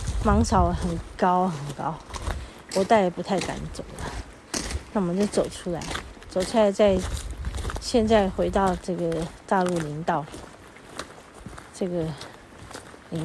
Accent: native